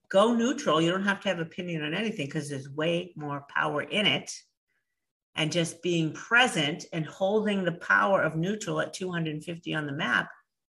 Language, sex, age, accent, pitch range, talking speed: English, female, 50-69, American, 150-210 Hz, 185 wpm